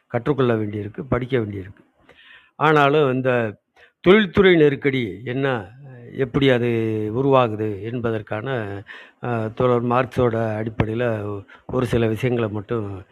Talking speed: 90 wpm